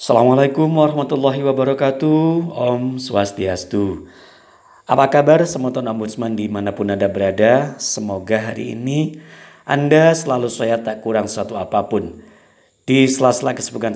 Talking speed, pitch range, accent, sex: 110 wpm, 105-130 Hz, native, male